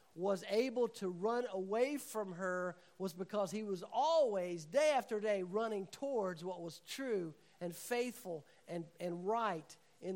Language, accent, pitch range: English, American, 175-220 Hz